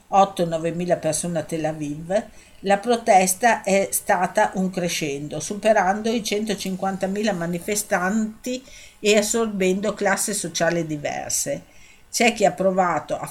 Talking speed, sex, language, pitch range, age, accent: 120 wpm, female, Italian, 165-205 Hz, 50-69, native